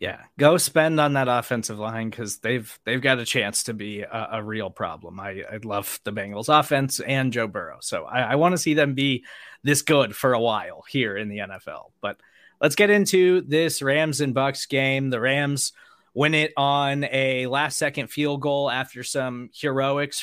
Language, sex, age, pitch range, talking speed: English, male, 20-39, 125-155 Hz, 195 wpm